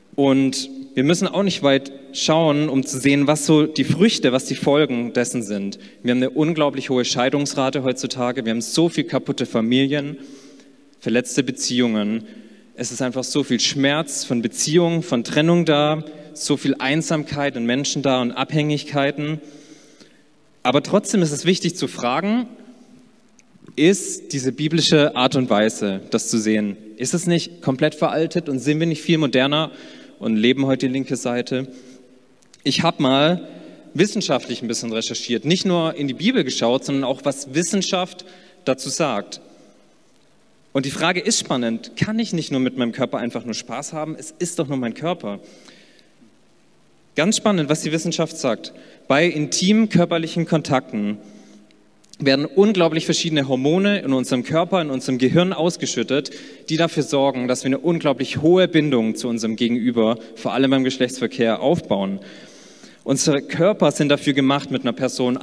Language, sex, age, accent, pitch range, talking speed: German, male, 30-49, German, 125-165 Hz, 160 wpm